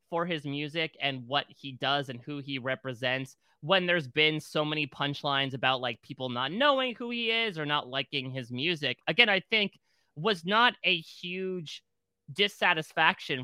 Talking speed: 170 wpm